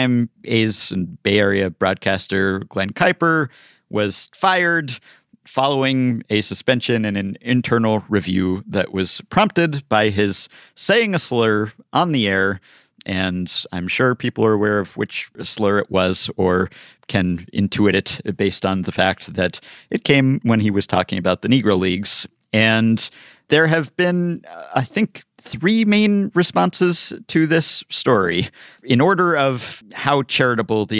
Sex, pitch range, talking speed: male, 95-145 Hz, 145 wpm